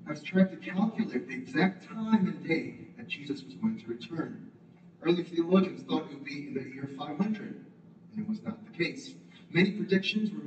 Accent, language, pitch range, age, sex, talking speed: American, English, 170-215 Hz, 40-59, male, 200 wpm